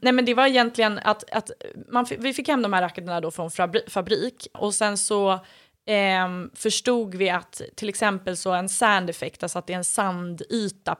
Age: 20-39